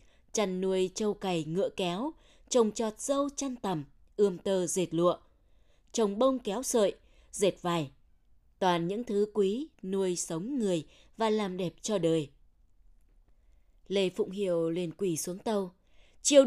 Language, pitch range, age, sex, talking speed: Vietnamese, 175-225 Hz, 20-39, female, 150 wpm